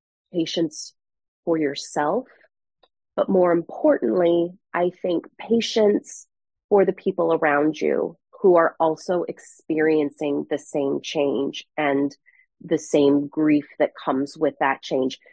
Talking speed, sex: 115 wpm, female